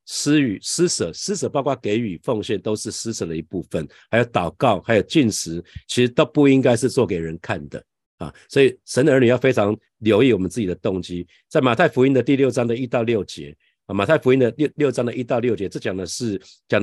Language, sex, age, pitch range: Chinese, male, 50-69, 95-125 Hz